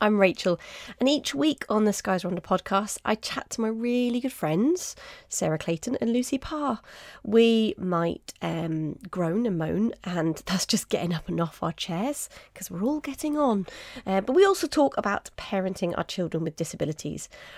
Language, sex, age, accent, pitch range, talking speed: English, female, 30-49, British, 165-215 Hz, 180 wpm